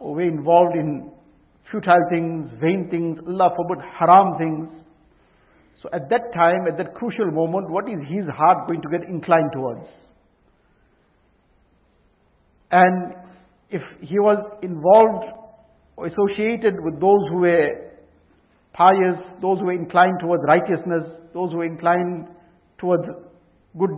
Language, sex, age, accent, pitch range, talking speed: English, male, 60-79, Indian, 165-195 Hz, 135 wpm